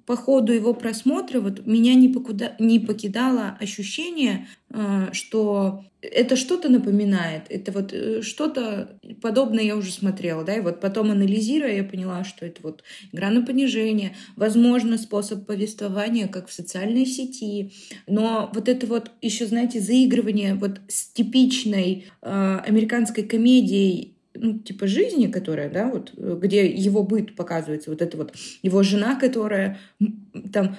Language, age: Russian, 20-39